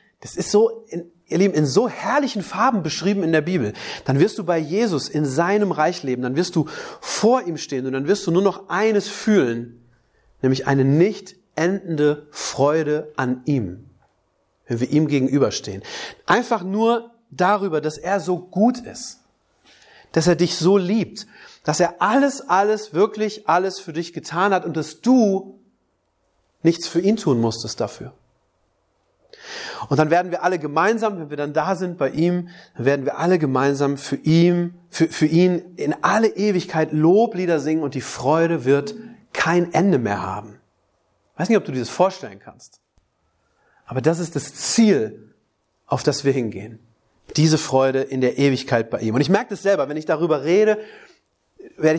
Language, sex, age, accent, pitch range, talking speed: German, male, 30-49, German, 140-195 Hz, 175 wpm